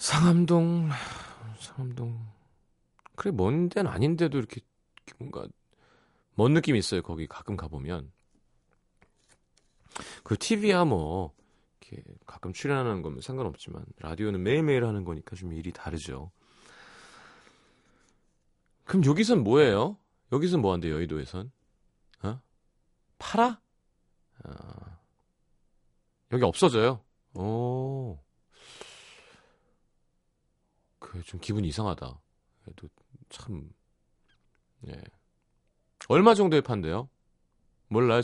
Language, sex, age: Korean, male, 40-59